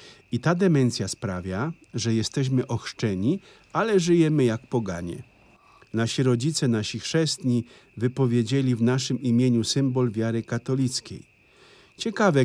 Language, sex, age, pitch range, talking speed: Polish, male, 50-69, 115-135 Hz, 110 wpm